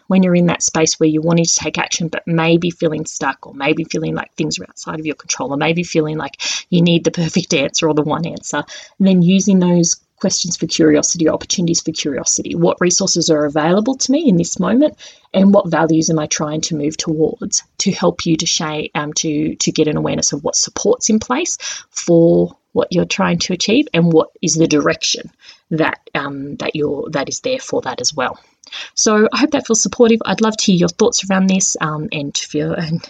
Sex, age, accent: female, 30-49, Australian